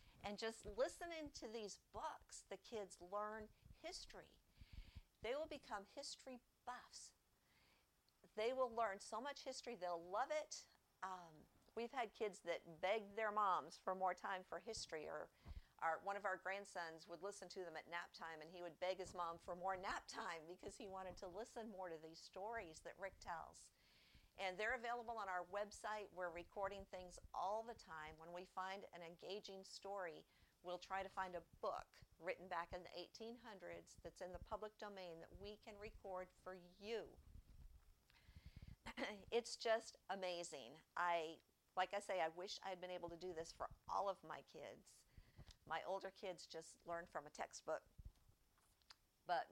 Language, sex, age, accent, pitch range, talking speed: English, female, 50-69, American, 175-215 Hz, 170 wpm